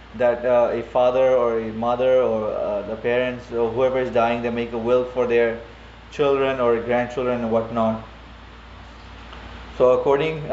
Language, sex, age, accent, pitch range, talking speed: English, male, 20-39, Indian, 120-135 Hz, 160 wpm